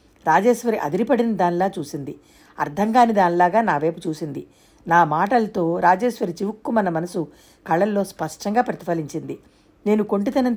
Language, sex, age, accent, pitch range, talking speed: Telugu, female, 50-69, native, 175-220 Hz, 120 wpm